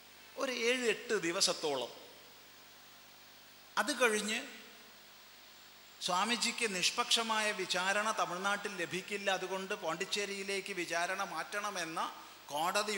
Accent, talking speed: native, 75 wpm